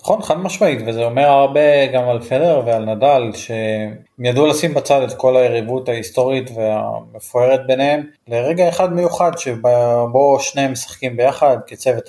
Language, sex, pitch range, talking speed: Hebrew, male, 115-140 Hz, 150 wpm